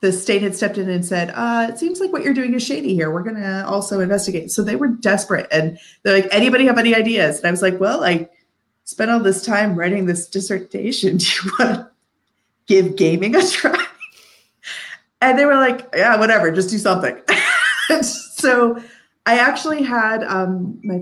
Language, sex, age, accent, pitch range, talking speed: English, female, 30-49, American, 155-210 Hz, 190 wpm